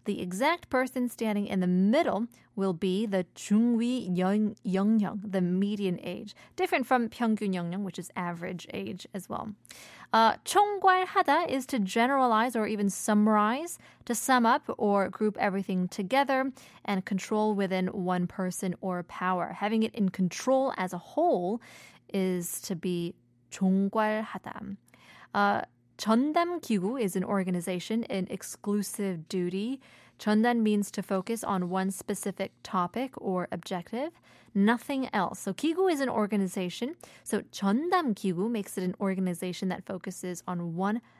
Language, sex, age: Korean, female, 20-39